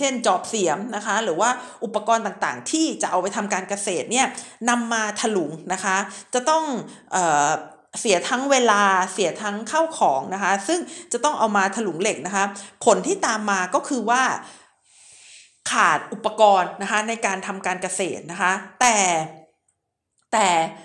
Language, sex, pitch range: Thai, female, 195-250 Hz